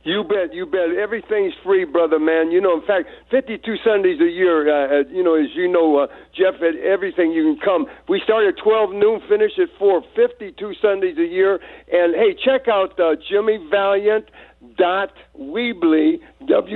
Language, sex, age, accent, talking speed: English, male, 60-79, American, 170 wpm